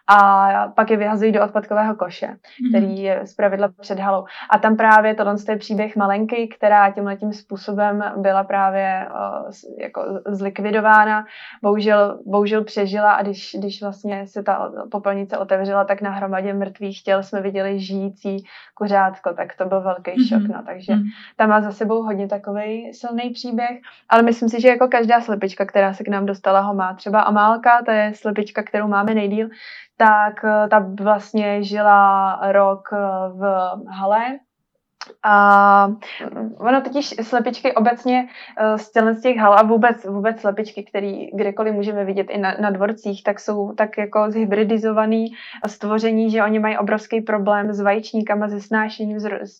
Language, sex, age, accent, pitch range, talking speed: Czech, female, 20-39, native, 200-220 Hz, 150 wpm